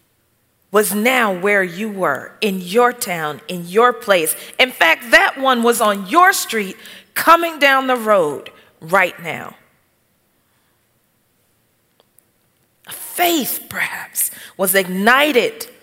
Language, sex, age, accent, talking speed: English, female, 40-59, American, 110 wpm